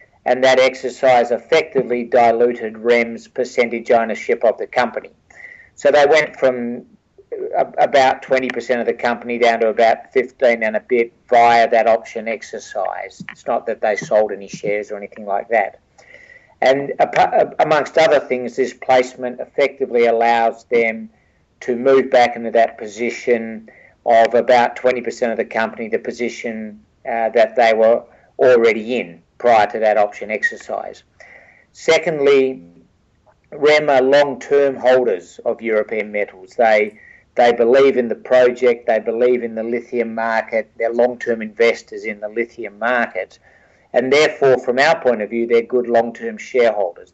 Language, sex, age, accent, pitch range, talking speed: English, male, 50-69, Australian, 115-125 Hz, 145 wpm